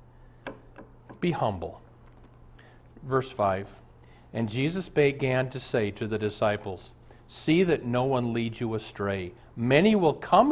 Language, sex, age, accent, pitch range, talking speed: English, male, 50-69, American, 110-145 Hz, 125 wpm